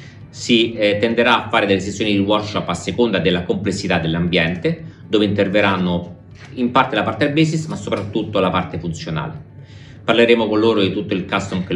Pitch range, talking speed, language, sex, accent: 90-115 Hz, 180 wpm, Italian, male, native